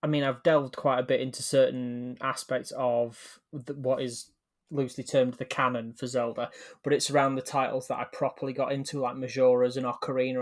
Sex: male